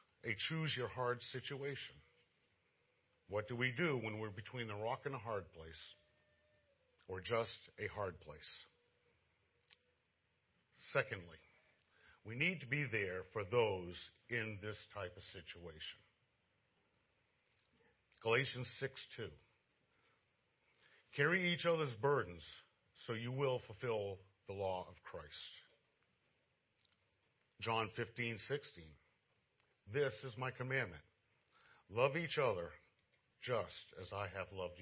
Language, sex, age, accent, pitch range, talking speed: English, male, 50-69, American, 100-135 Hz, 115 wpm